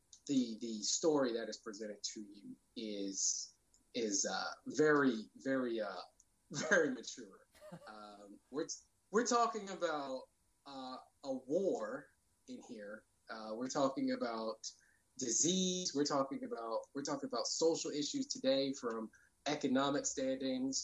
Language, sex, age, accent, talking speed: English, male, 20-39, American, 125 wpm